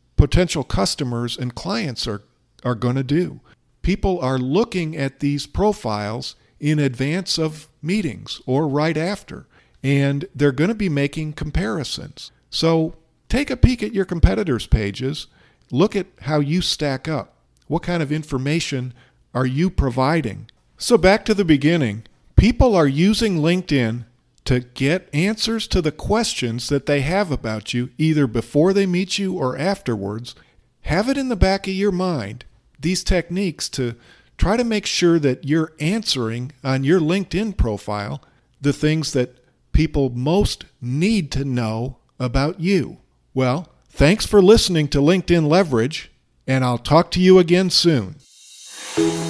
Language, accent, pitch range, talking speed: English, American, 125-180 Hz, 150 wpm